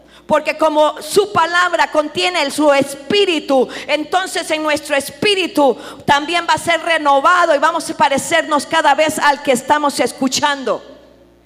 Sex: female